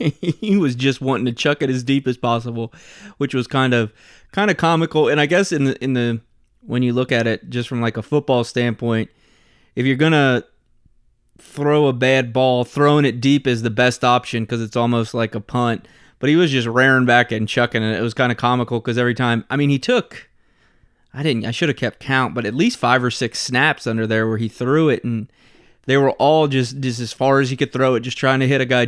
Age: 20-39